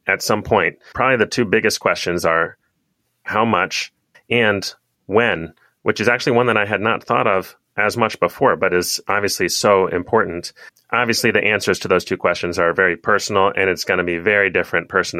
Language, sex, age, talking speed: English, male, 30-49, 195 wpm